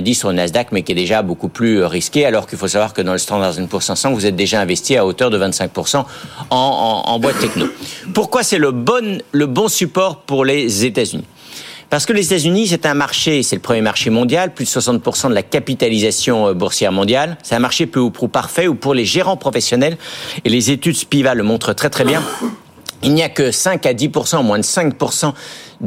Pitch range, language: 105-150 Hz, French